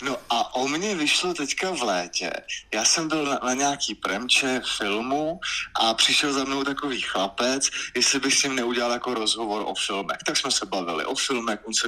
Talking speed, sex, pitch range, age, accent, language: 195 wpm, male, 115-145 Hz, 20-39, native, Czech